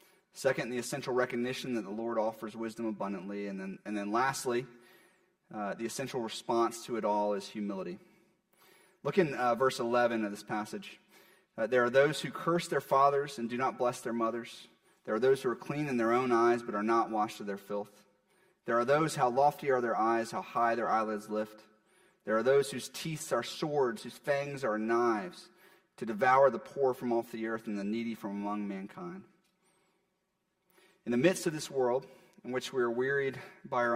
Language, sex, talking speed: English, male, 200 wpm